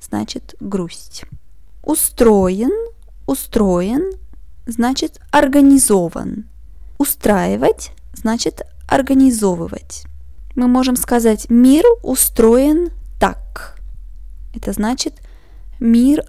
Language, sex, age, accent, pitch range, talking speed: Russian, female, 20-39, native, 215-270 Hz, 65 wpm